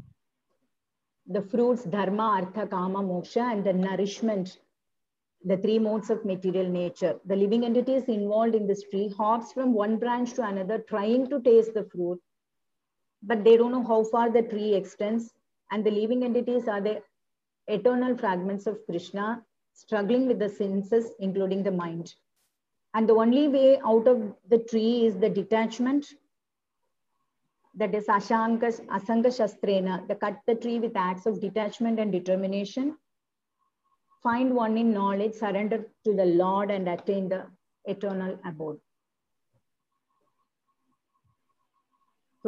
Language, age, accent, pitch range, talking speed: English, 50-69, Indian, 200-235 Hz, 140 wpm